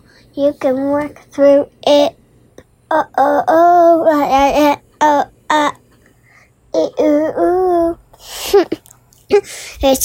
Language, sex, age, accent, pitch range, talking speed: English, male, 20-39, American, 275-320 Hz, 95 wpm